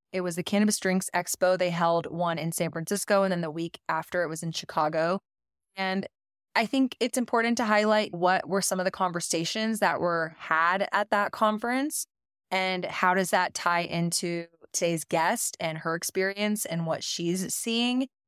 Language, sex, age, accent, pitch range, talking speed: English, female, 20-39, American, 170-205 Hz, 180 wpm